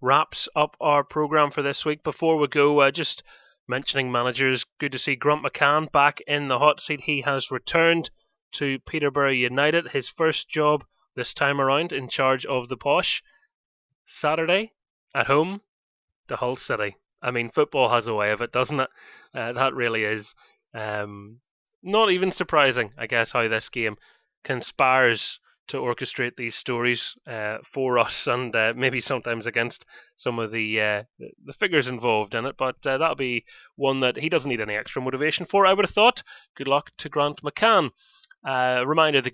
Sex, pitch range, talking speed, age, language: male, 115-155 Hz, 180 wpm, 20-39, English